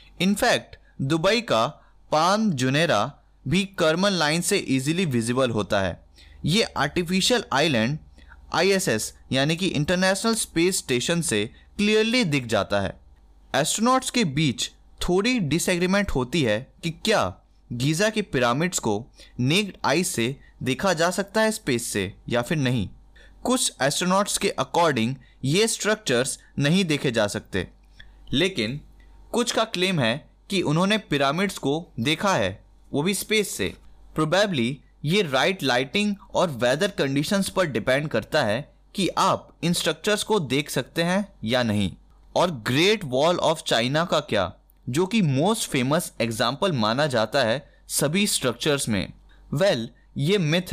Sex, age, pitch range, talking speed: male, 20-39, 120-190 Hz, 145 wpm